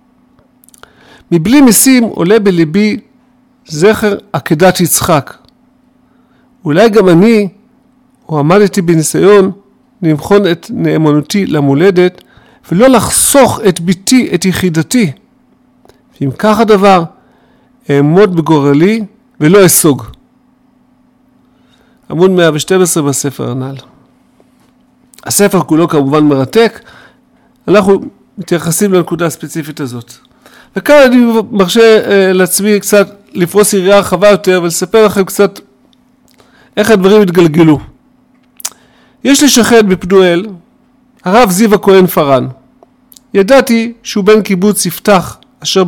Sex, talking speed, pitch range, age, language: male, 95 wpm, 175-240 Hz, 50-69, Hebrew